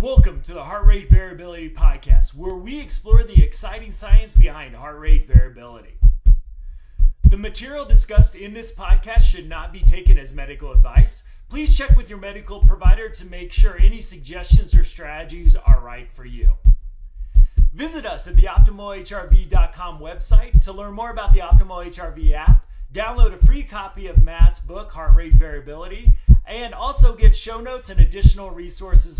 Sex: male